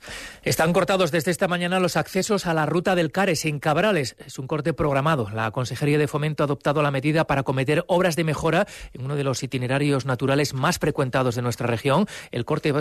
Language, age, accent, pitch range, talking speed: Spanish, 40-59, Spanish, 135-165 Hz, 205 wpm